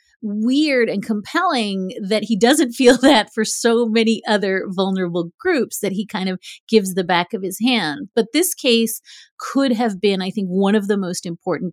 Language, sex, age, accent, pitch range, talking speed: English, female, 30-49, American, 180-230 Hz, 190 wpm